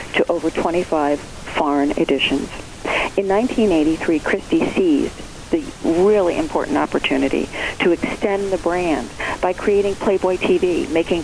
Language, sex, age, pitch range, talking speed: English, female, 50-69, 165-210 Hz, 115 wpm